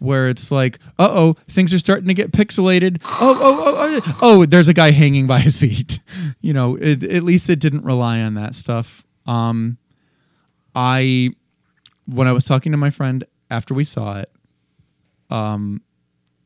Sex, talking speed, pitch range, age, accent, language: male, 180 wpm, 115-145 Hz, 20-39, American, English